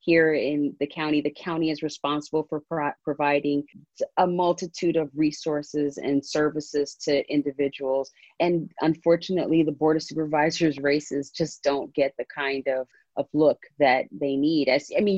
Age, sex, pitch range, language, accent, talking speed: 30-49, female, 140-155 Hz, English, American, 150 wpm